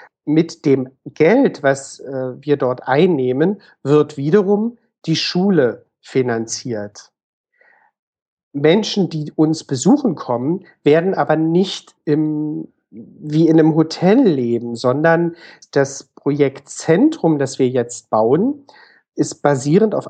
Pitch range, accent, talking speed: 135-185 Hz, German, 110 wpm